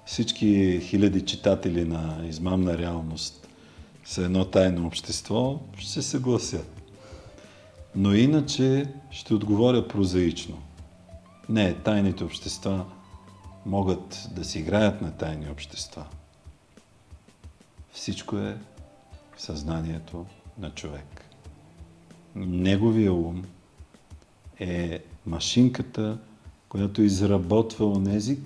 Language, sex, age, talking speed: Bulgarian, male, 50-69, 85 wpm